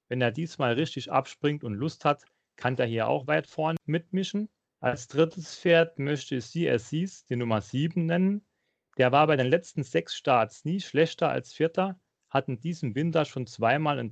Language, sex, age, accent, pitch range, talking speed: German, male, 40-59, German, 125-165 Hz, 185 wpm